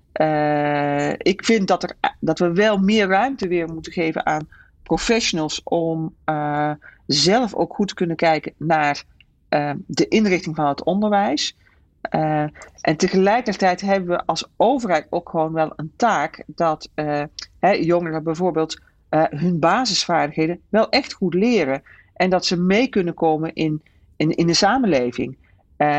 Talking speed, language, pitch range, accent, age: 150 wpm, Dutch, 155-200 Hz, Dutch, 40-59